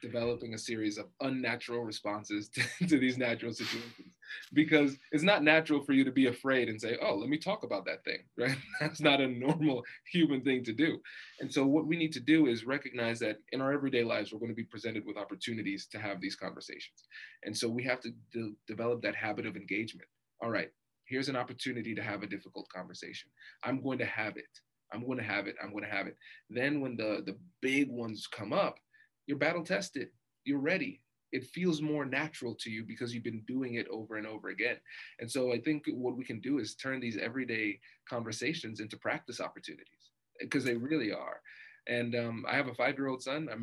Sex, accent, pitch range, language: male, American, 115-140 Hz, English